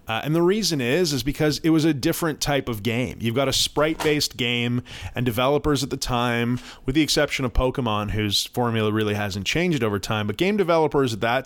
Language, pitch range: English, 115-145 Hz